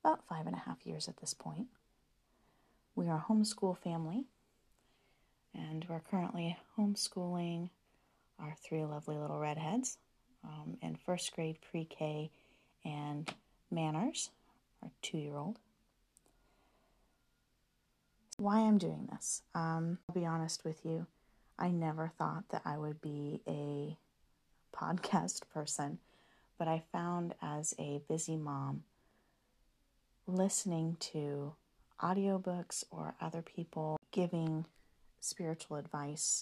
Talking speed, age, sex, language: 110 wpm, 40-59, female, English